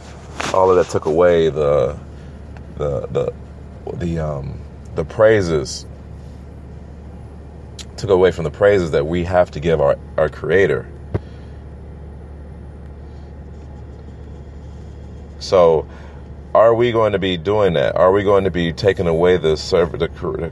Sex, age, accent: male, 30-49, American